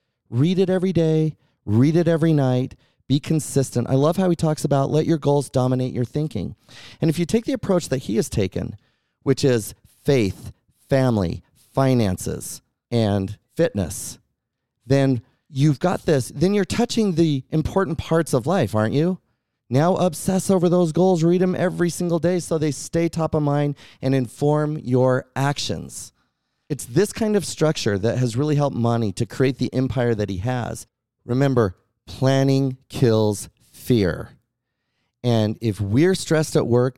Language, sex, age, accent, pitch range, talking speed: English, male, 30-49, American, 115-155 Hz, 160 wpm